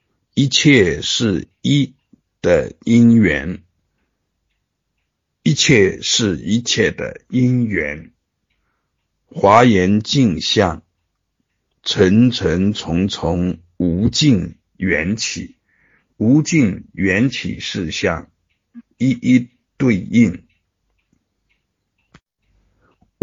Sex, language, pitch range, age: male, Chinese, 90-120 Hz, 60-79